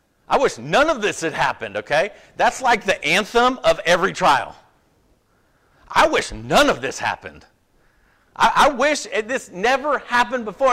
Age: 50-69